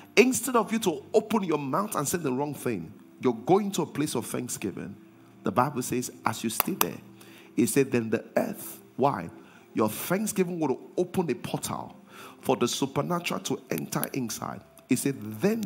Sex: male